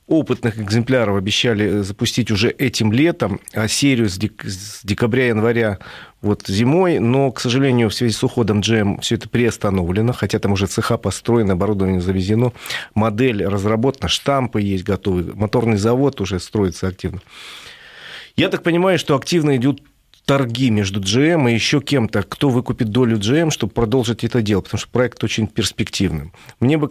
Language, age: Russian, 40-59